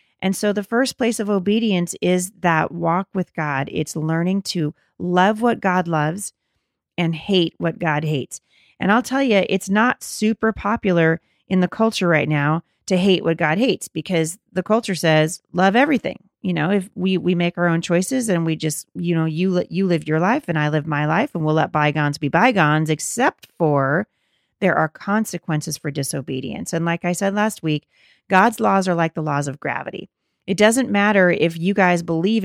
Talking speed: 200 wpm